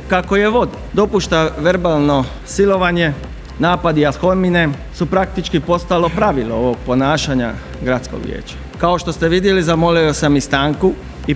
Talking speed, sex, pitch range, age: 130 wpm, male, 150-185 Hz, 40-59